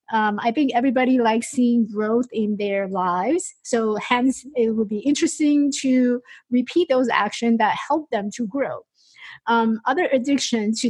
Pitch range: 210-265 Hz